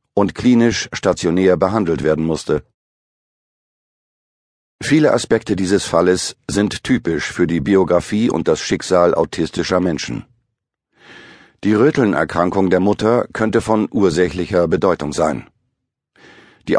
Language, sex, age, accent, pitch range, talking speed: German, male, 50-69, German, 90-115 Hz, 105 wpm